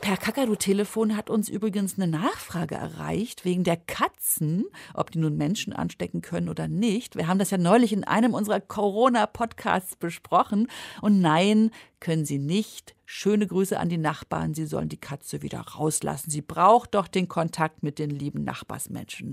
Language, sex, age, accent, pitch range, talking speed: German, female, 50-69, German, 175-225 Hz, 170 wpm